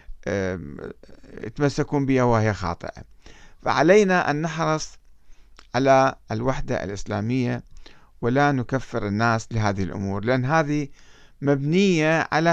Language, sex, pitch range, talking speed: Arabic, male, 115-165 Hz, 90 wpm